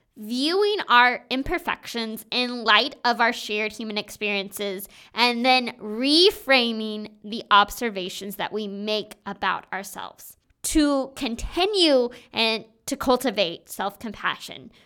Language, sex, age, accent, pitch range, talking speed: English, female, 20-39, American, 210-250 Hz, 105 wpm